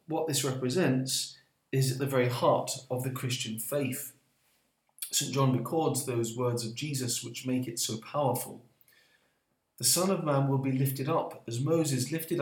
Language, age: English, 40-59